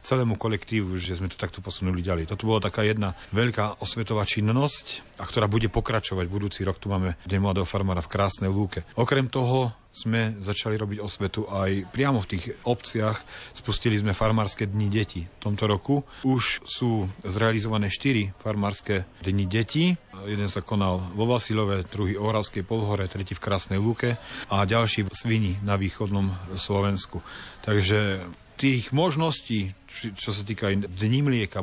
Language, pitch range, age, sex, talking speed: Slovak, 95-110 Hz, 40-59, male, 160 wpm